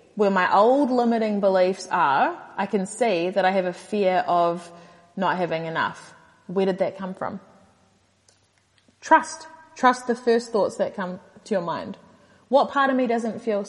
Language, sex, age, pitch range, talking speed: English, female, 30-49, 185-220 Hz, 170 wpm